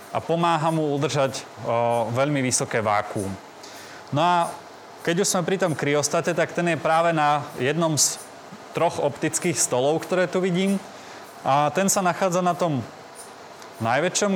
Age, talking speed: 20-39, 150 wpm